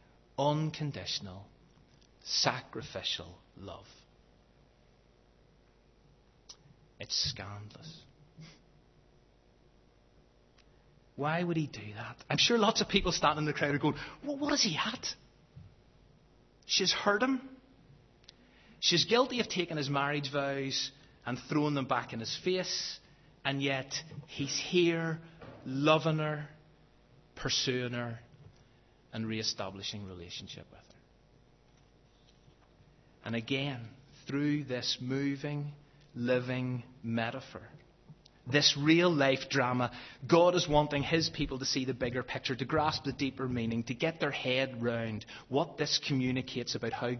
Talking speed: 115 wpm